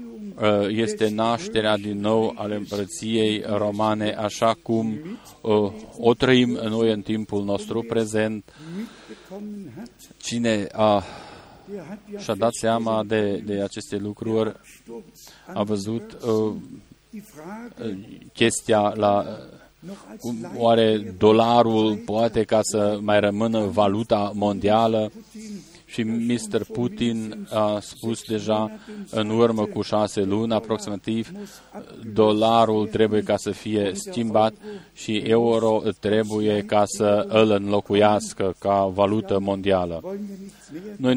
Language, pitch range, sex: Romanian, 105-115 Hz, male